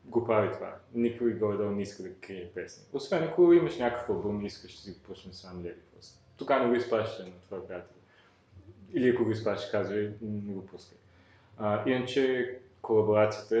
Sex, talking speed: male, 175 wpm